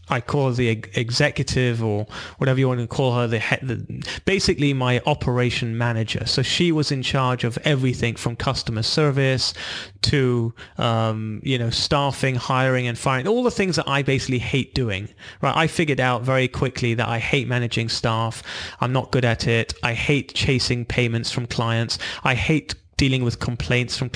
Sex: male